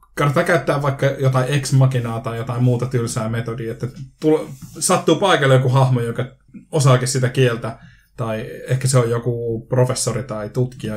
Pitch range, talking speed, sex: 115-135 Hz, 160 wpm, male